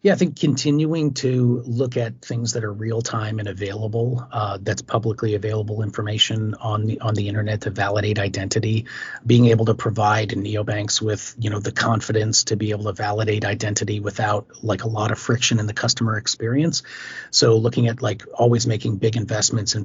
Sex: male